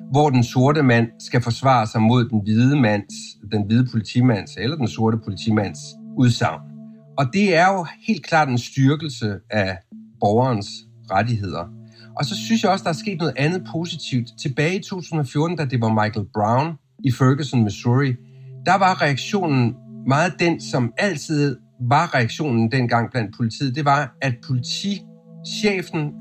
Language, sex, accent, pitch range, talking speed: Danish, male, native, 115-160 Hz, 155 wpm